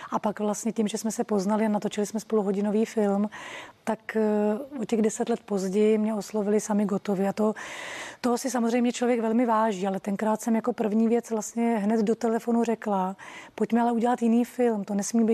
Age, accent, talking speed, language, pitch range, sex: 30-49, native, 195 wpm, Czech, 220-245 Hz, female